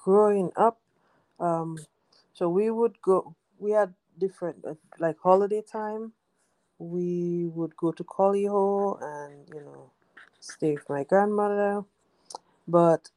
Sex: female